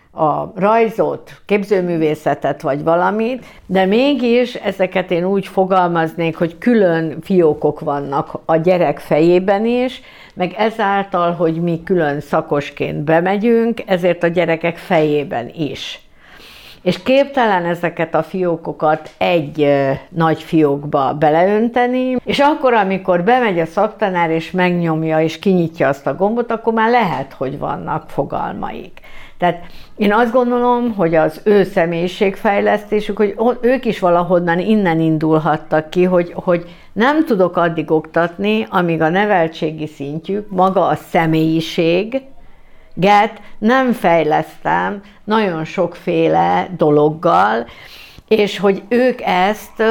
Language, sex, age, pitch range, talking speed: Hungarian, female, 60-79, 160-210 Hz, 115 wpm